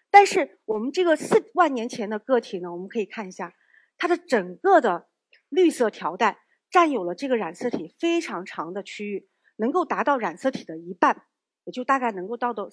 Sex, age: female, 50-69